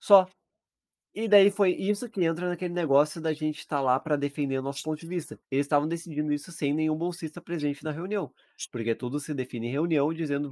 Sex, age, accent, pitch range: male, 20-39, Brazilian, 115-170 Hz